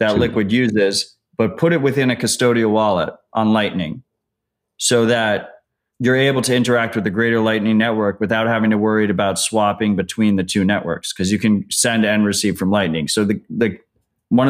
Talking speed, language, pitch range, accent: 185 wpm, English, 105-120 Hz, American